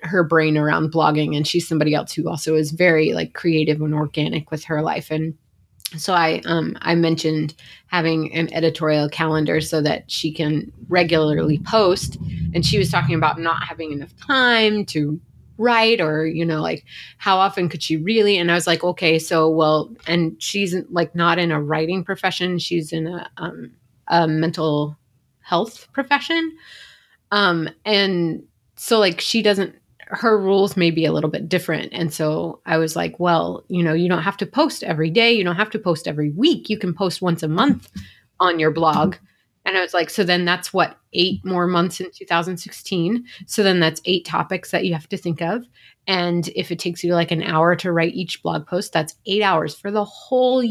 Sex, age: female, 30-49